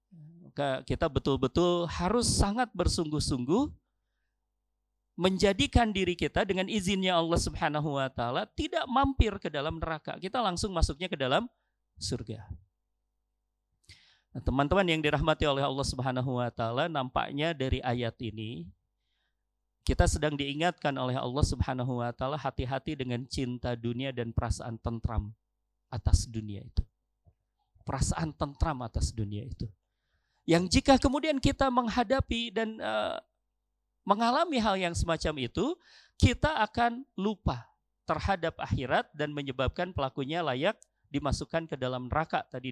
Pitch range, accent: 115-190 Hz, native